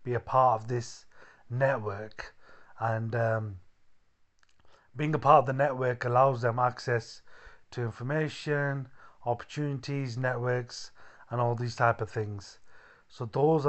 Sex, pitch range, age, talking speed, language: male, 115-135 Hz, 30-49, 125 wpm, English